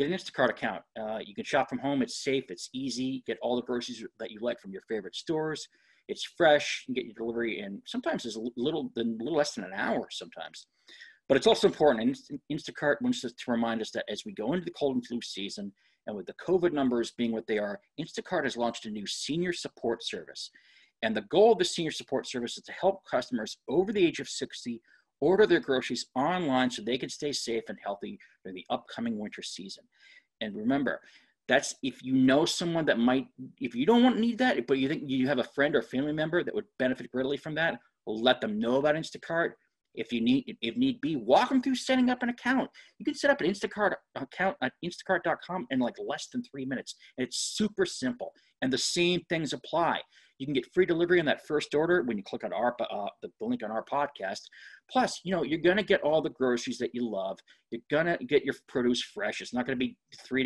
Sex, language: male, English